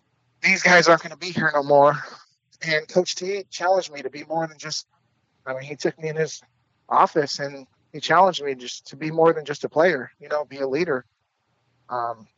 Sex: male